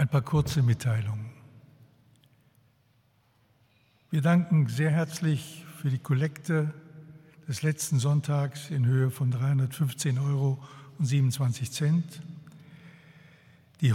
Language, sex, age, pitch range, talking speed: German, male, 60-79, 135-160 Hz, 85 wpm